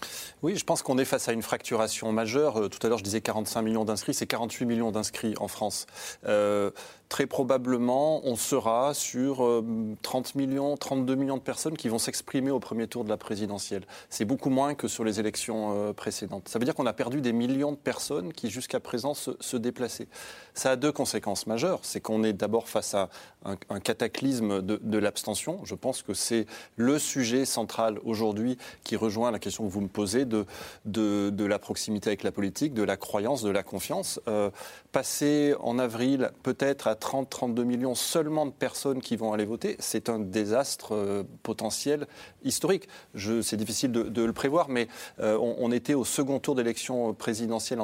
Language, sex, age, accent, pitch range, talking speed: French, male, 20-39, French, 110-135 Hz, 195 wpm